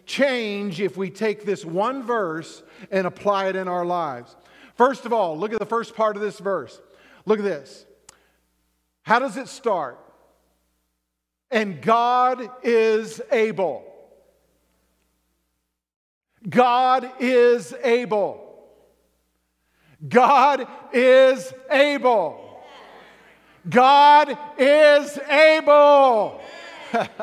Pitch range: 205-285 Hz